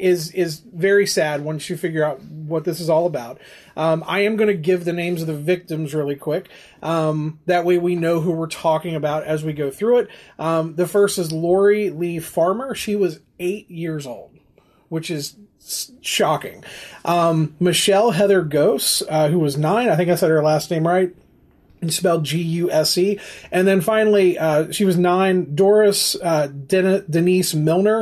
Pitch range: 155-190 Hz